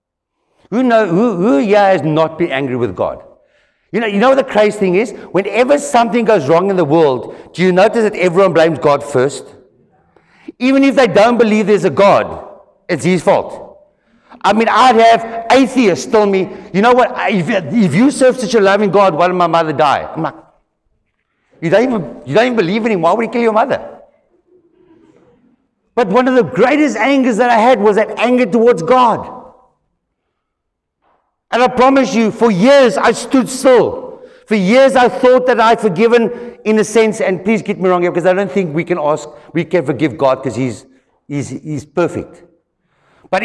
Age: 60-79